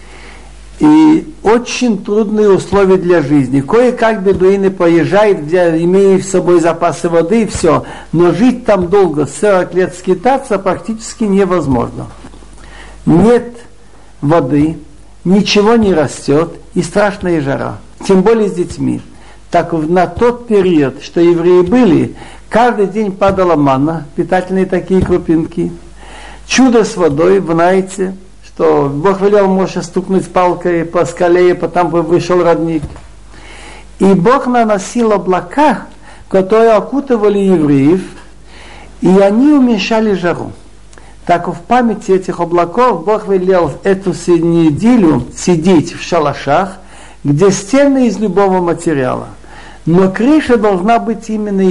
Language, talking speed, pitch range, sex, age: Russian, 120 wpm, 170-210 Hz, male, 60-79